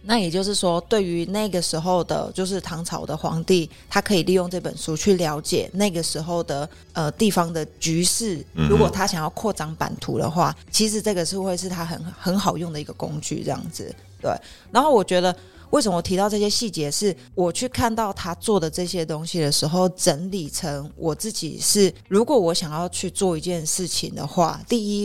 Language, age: Chinese, 20-39